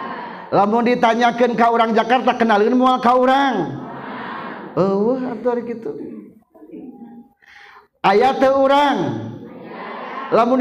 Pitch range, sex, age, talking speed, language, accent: 215-275 Hz, male, 40-59, 100 wpm, Indonesian, native